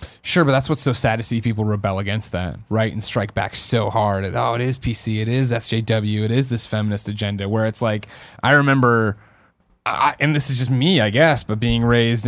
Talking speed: 225 wpm